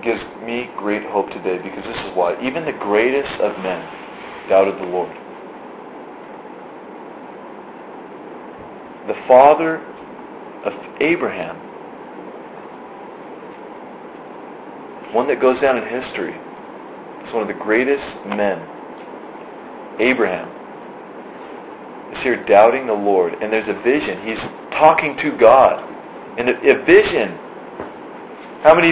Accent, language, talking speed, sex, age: American, English, 110 wpm, male, 40-59